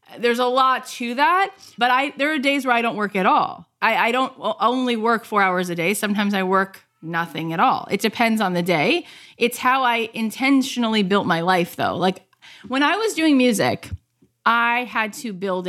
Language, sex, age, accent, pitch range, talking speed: English, female, 30-49, American, 180-240 Hz, 205 wpm